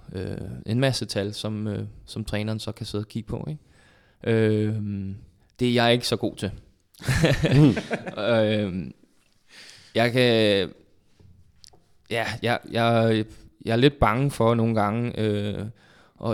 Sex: male